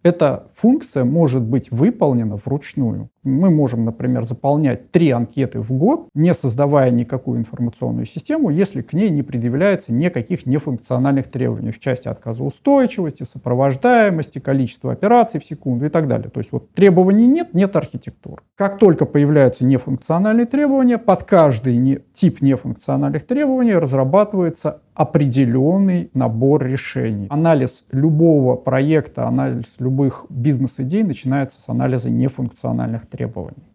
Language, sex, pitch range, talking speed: Russian, male, 125-165 Hz, 125 wpm